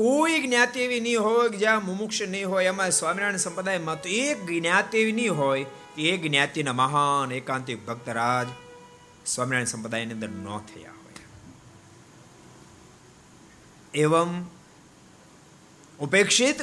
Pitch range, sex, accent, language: 125-185 Hz, male, native, Gujarati